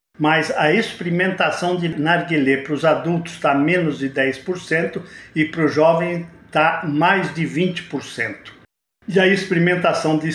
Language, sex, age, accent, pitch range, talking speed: Portuguese, male, 50-69, Brazilian, 150-185 Hz, 140 wpm